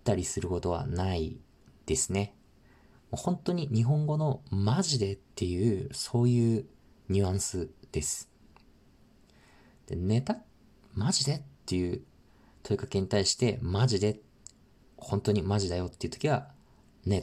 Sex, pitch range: male, 90-130 Hz